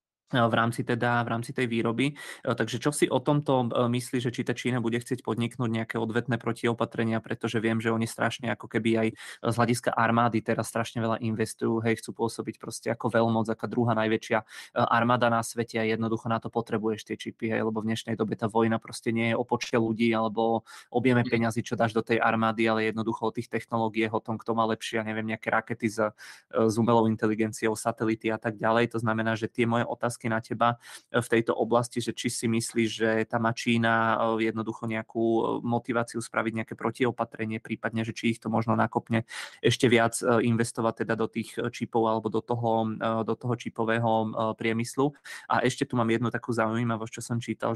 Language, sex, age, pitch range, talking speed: Czech, male, 20-39, 110-120 Hz, 190 wpm